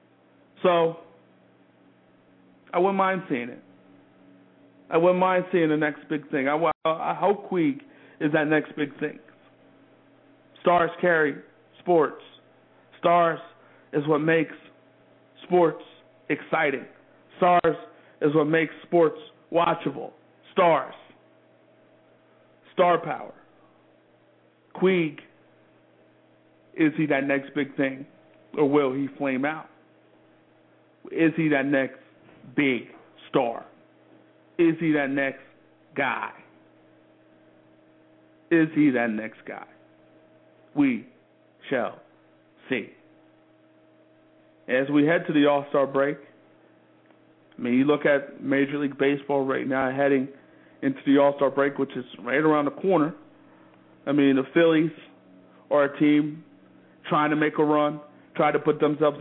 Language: English